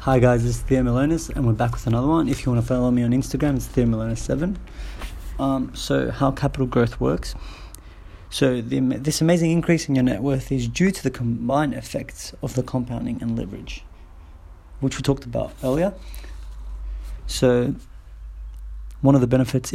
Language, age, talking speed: English, 30-49, 180 wpm